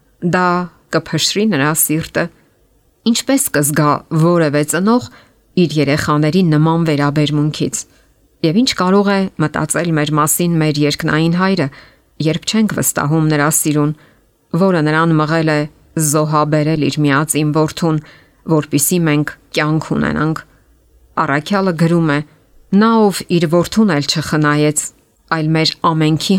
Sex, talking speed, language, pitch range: female, 95 wpm, English, 150-180 Hz